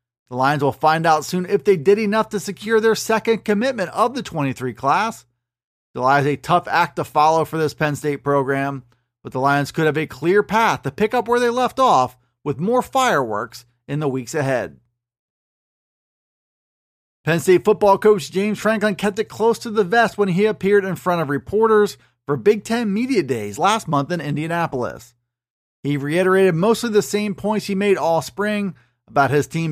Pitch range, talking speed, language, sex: 140-205 Hz, 190 wpm, English, male